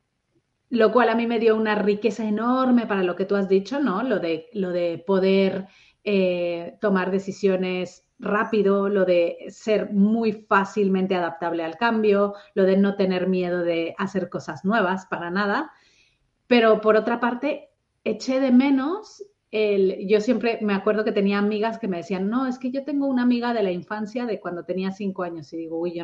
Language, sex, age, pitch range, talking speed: Spanish, female, 30-49, 185-225 Hz, 185 wpm